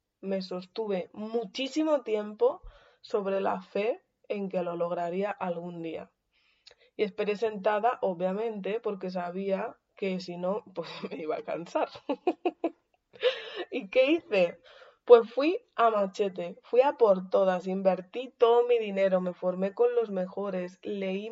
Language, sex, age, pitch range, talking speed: Spanish, female, 20-39, 185-235 Hz, 135 wpm